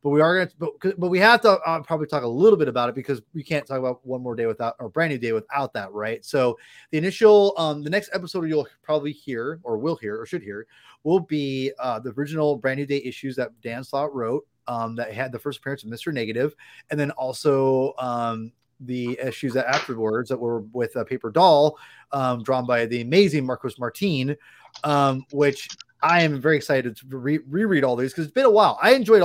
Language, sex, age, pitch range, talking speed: English, male, 30-49, 125-170 Hz, 225 wpm